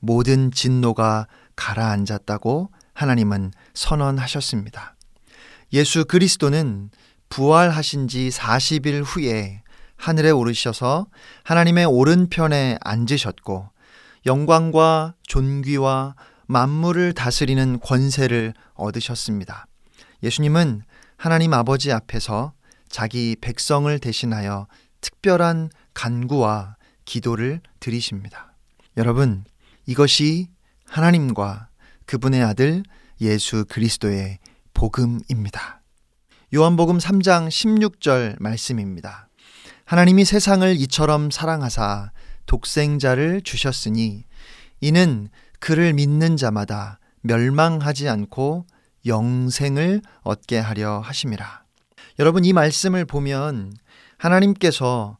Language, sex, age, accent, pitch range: Korean, male, 40-59, native, 115-160 Hz